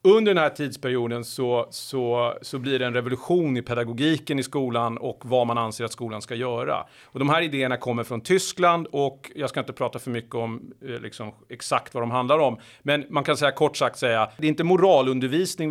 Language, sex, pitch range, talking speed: Swedish, male, 125-155 Hz, 210 wpm